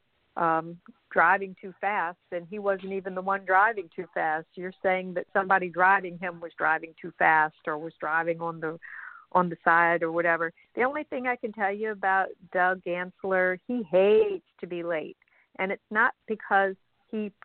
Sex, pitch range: female, 180-210 Hz